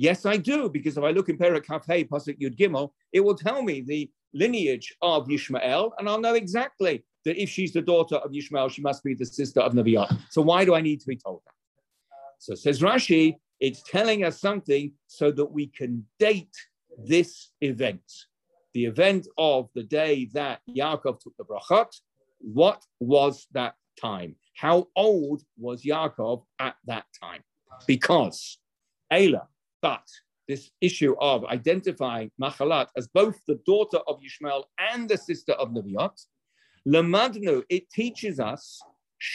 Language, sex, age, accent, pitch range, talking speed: English, male, 50-69, British, 140-200 Hz, 160 wpm